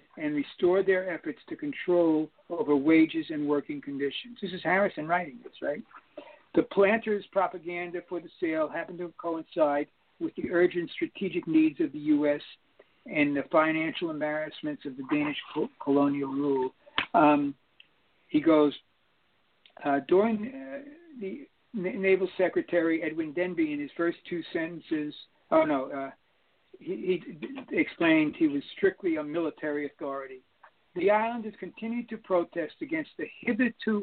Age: 60-79